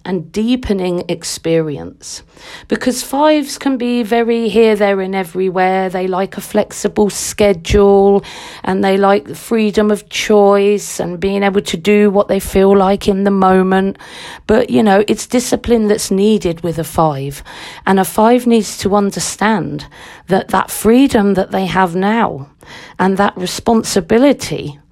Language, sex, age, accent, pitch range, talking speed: English, female, 50-69, British, 185-225 Hz, 150 wpm